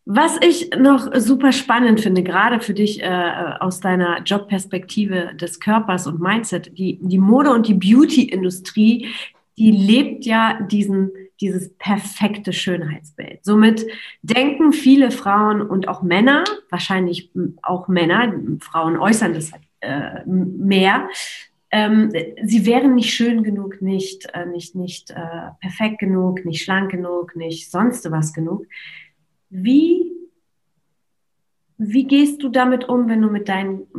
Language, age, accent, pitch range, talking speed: German, 30-49, German, 185-225 Hz, 130 wpm